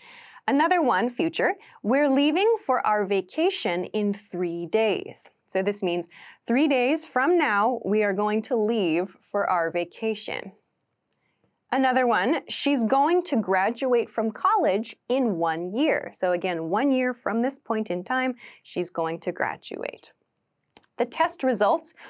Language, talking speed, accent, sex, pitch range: English, 145 wpm, American, female, 210-315 Hz